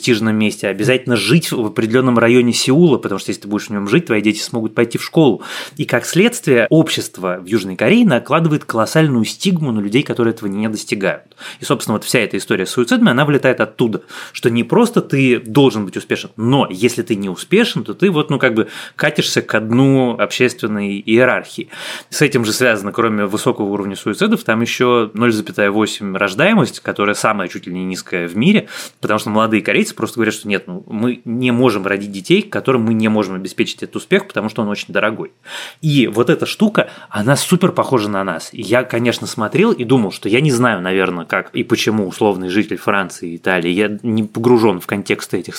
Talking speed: 200 wpm